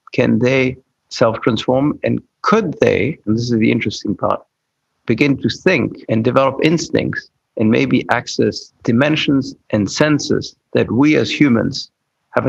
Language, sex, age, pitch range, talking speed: English, male, 50-69, 115-135 Hz, 140 wpm